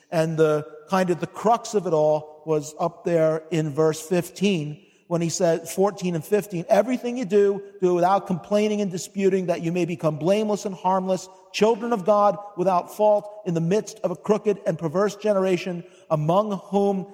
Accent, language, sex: American, English, male